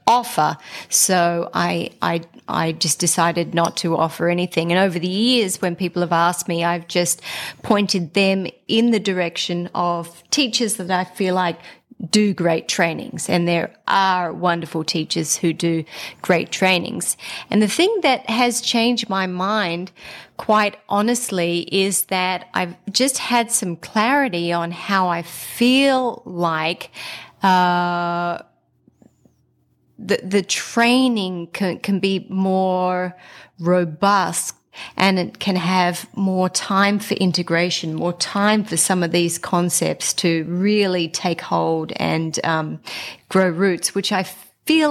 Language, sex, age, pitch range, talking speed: English, female, 30-49, 170-210 Hz, 135 wpm